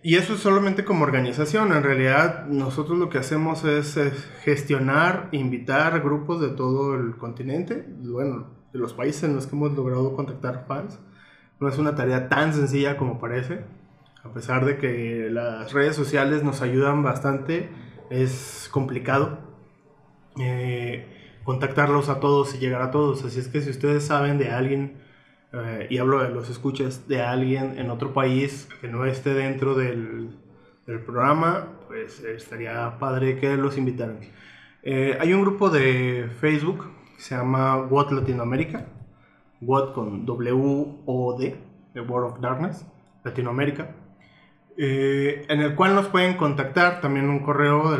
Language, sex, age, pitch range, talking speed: Spanish, male, 20-39, 130-145 Hz, 155 wpm